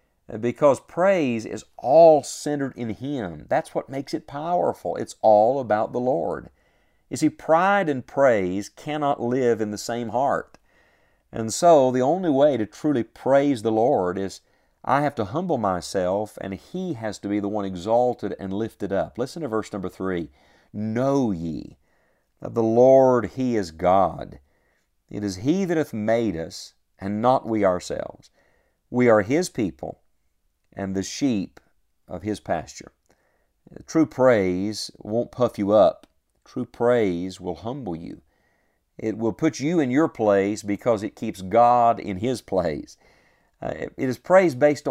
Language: English